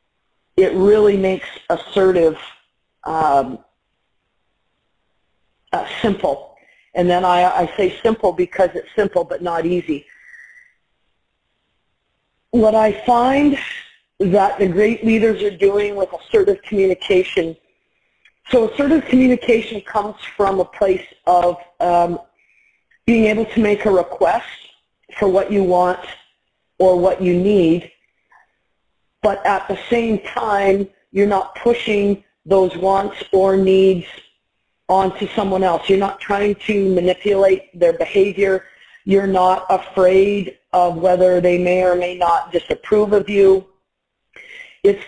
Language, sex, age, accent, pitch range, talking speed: English, female, 40-59, American, 185-225 Hz, 120 wpm